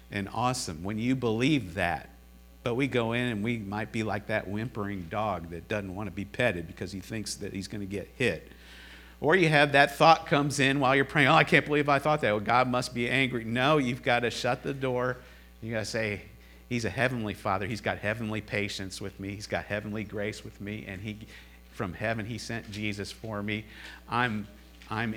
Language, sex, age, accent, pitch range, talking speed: English, male, 50-69, American, 90-120 Hz, 220 wpm